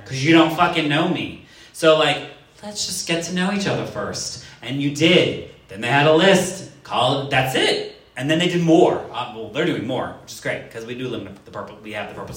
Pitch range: 110-155 Hz